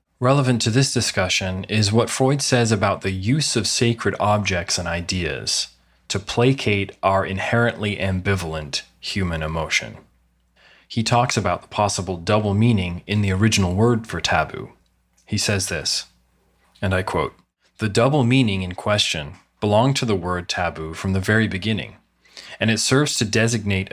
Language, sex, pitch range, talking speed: English, male, 90-115 Hz, 155 wpm